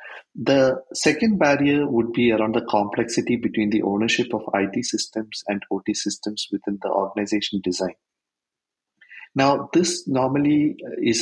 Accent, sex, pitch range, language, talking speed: Indian, male, 100-120 Hz, English, 135 wpm